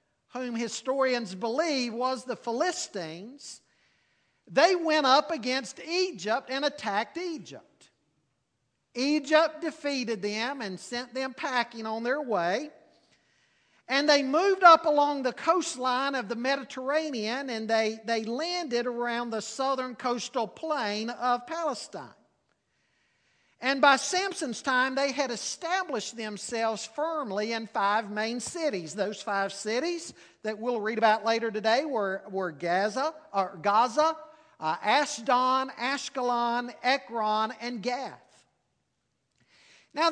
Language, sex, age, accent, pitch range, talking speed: English, male, 50-69, American, 225-295 Hz, 120 wpm